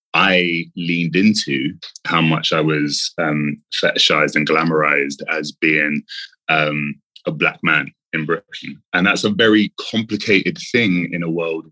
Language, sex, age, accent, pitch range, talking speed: English, male, 20-39, British, 80-100 Hz, 145 wpm